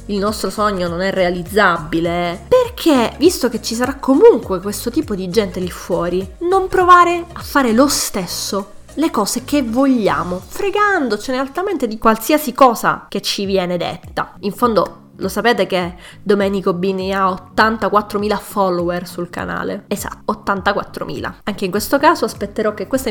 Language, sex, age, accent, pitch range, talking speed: Italian, female, 20-39, native, 185-230 Hz, 150 wpm